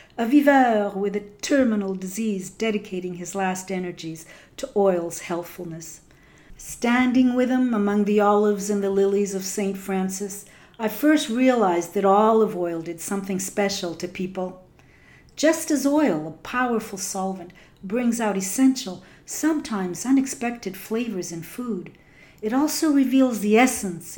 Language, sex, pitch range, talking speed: English, female, 175-240 Hz, 135 wpm